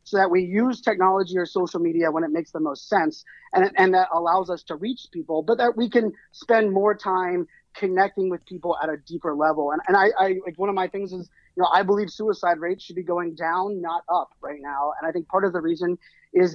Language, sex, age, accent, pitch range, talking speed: English, male, 30-49, American, 170-200 Hz, 245 wpm